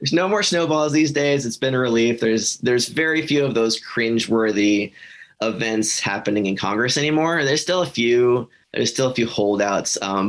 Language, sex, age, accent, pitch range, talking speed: English, male, 20-39, American, 100-125 Hz, 185 wpm